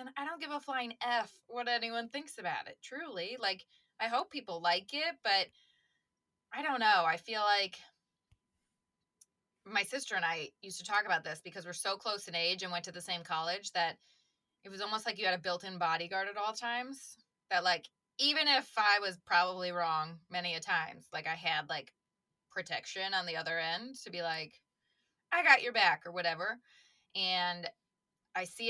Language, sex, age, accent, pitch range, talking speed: English, female, 20-39, American, 175-225 Hz, 190 wpm